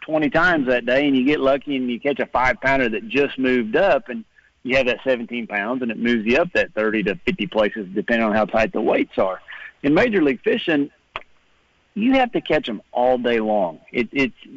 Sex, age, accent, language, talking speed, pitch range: male, 50-69, American, English, 225 wpm, 115-135 Hz